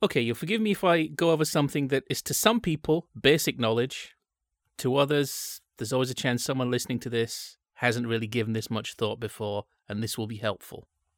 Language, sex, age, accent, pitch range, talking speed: English, male, 30-49, British, 110-140 Hz, 205 wpm